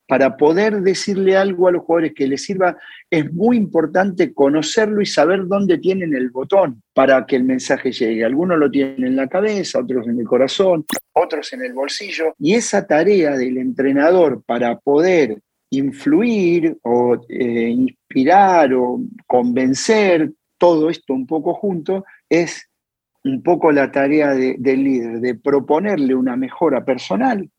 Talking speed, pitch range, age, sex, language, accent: 150 wpm, 140-190 Hz, 50-69, male, Spanish, Argentinian